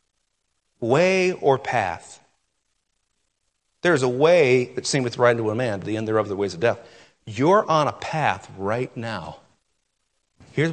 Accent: American